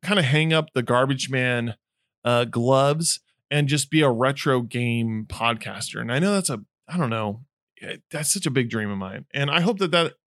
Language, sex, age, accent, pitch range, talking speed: English, male, 20-39, American, 130-180 Hz, 210 wpm